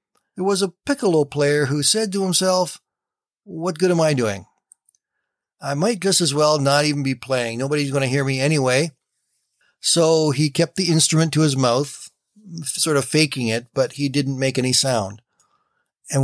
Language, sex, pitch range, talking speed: English, male, 130-170 Hz, 175 wpm